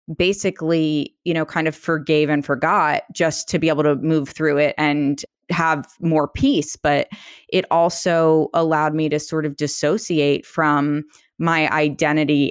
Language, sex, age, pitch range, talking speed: English, female, 20-39, 140-165 Hz, 155 wpm